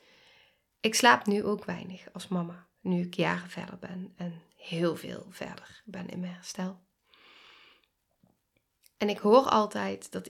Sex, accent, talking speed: female, Dutch, 145 wpm